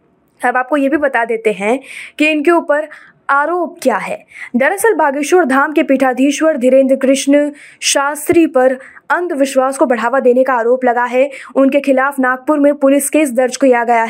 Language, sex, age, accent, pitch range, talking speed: Hindi, female, 20-39, native, 250-290 Hz, 170 wpm